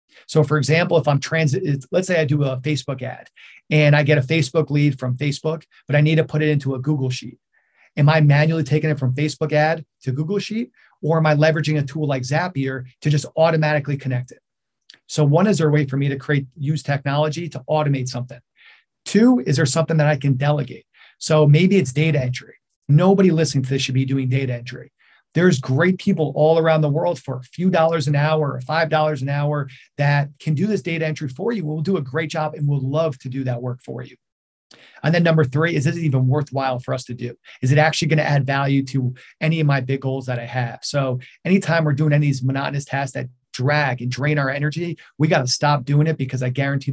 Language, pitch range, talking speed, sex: English, 135-155 Hz, 235 wpm, male